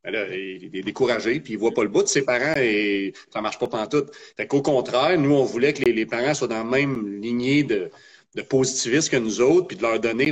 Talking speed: 255 wpm